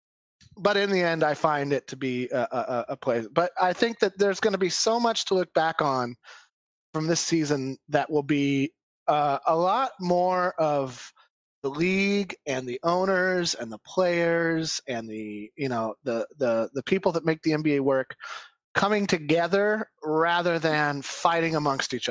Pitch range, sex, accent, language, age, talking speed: 145-180 Hz, male, American, English, 30-49, 180 wpm